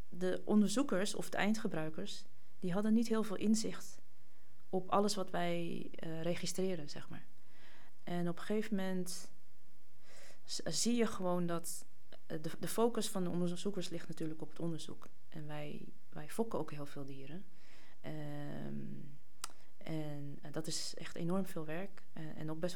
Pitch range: 155-185 Hz